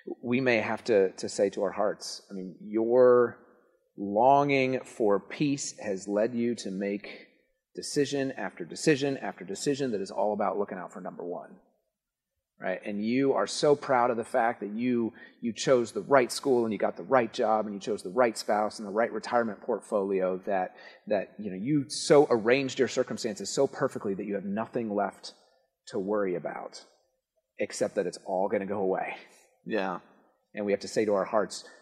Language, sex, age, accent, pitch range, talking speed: English, male, 30-49, American, 105-130 Hz, 195 wpm